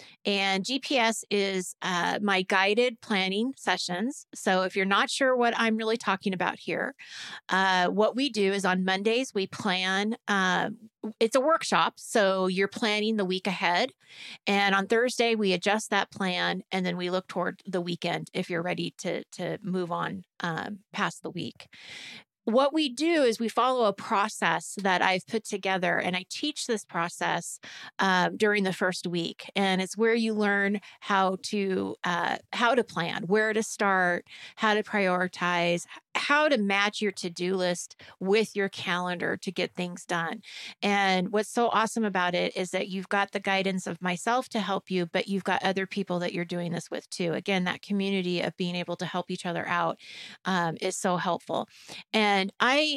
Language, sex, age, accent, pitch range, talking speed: English, female, 30-49, American, 185-220 Hz, 180 wpm